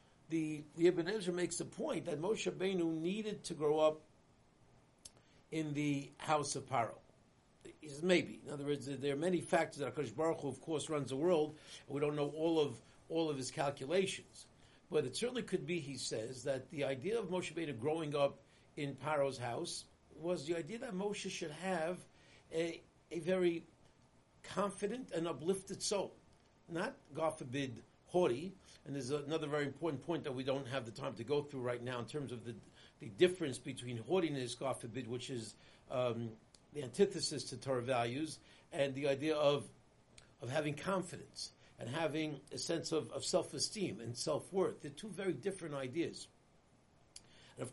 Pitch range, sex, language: 135-170 Hz, male, English